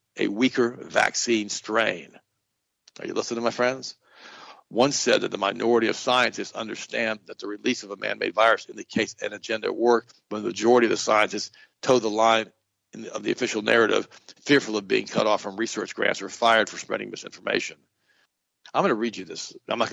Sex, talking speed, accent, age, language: male, 210 wpm, American, 60-79, English